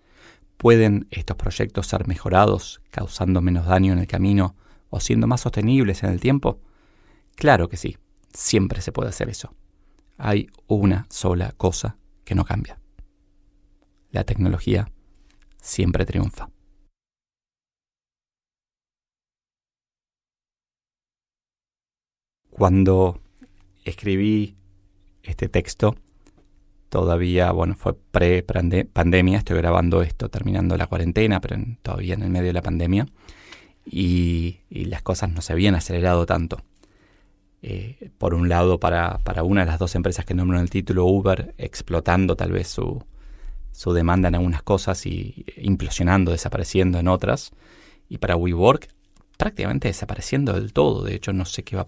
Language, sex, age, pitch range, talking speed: Spanish, male, 20-39, 90-100 Hz, 130 wpm